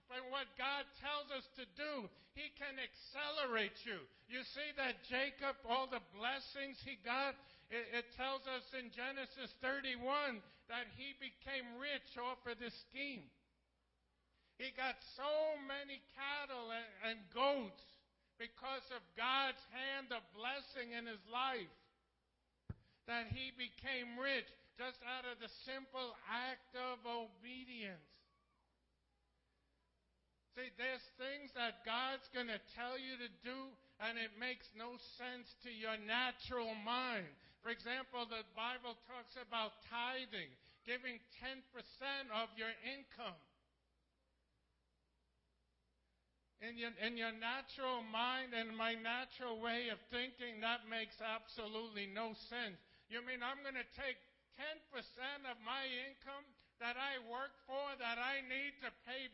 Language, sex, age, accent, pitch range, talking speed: English, male, 50-69, American, 225-265 Hz, 130 wpm